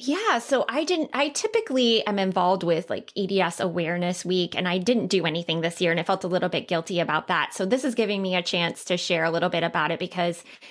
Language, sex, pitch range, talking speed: English, female, 185-225 Hz, 245 wpm